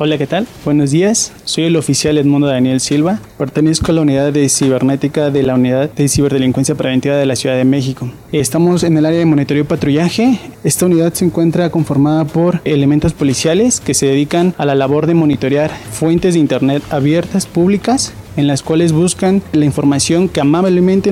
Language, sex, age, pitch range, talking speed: Spanish, male, 20-39, 140-170 Hz, 185 wpm